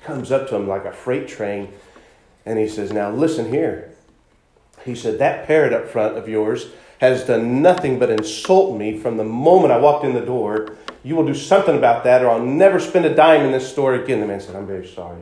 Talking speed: 230 wpm